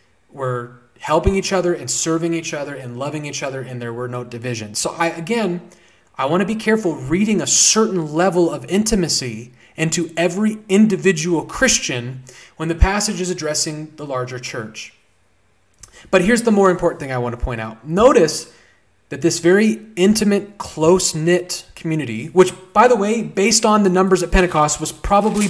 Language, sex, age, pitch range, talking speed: English, male, 30-49, 125-190 Hz, 170 wpm